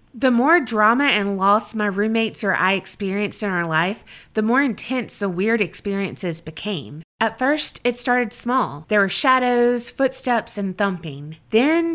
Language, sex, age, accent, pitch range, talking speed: English, female, 30-49, American, 195-245 Hz, 160 wpm